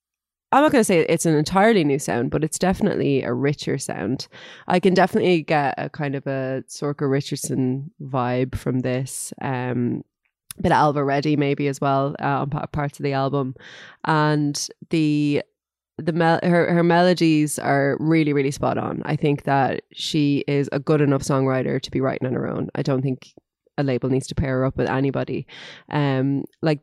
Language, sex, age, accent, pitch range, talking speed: English, female, 20-39, Irish, 135-155 Hz, 185 wpm